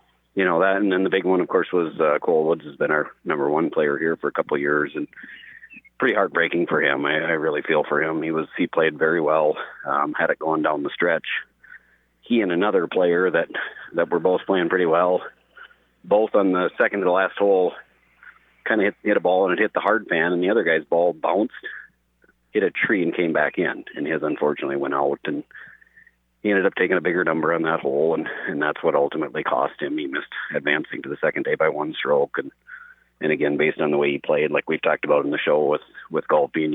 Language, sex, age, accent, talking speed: English, male, 40-59, American, 240 wpm